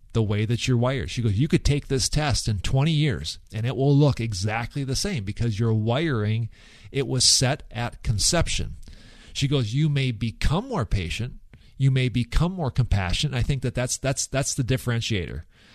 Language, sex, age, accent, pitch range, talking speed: English, male, 40-59, American, 105-135 Hz, 190 wpm